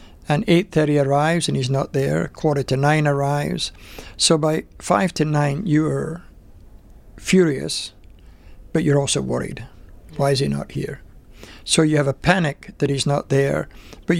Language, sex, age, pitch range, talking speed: English, male, 60-79, 115-160 Hz, 155 wpm